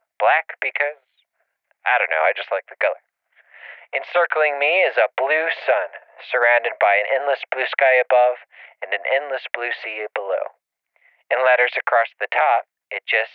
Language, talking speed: English, 160 wpm